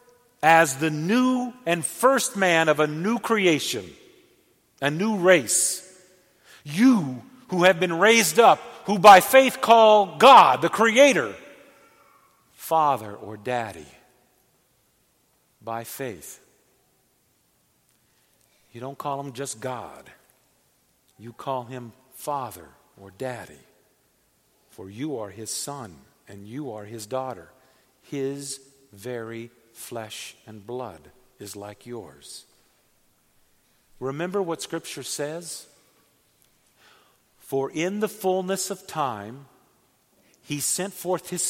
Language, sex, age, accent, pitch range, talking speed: English, male, 50-69, American, 120-185 Hz, 110 wpm